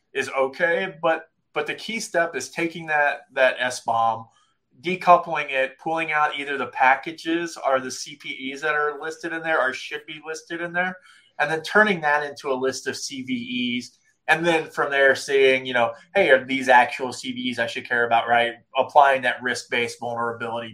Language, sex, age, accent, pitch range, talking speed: English, male, 20-39, American, 120-155 Hz, 185 wpm